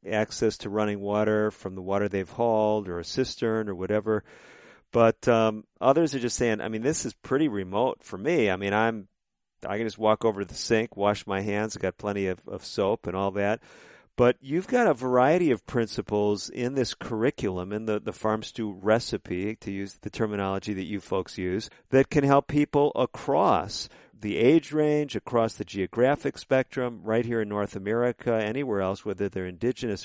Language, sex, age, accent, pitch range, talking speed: English, male, 50-69, American, 105-130 Hz, 195 wpm